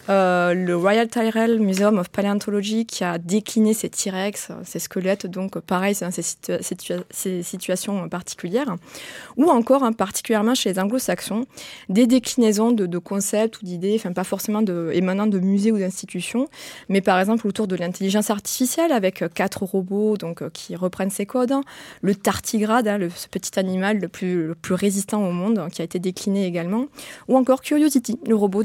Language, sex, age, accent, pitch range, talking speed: French, female, 20-39, French, 185-230 Hz, 175 wpm